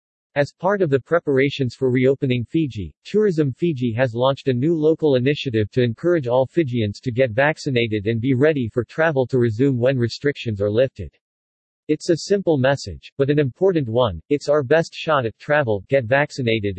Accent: American